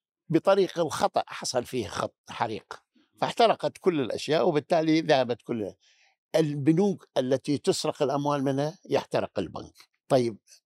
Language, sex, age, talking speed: Arabic, male, 60-79, 115 wpm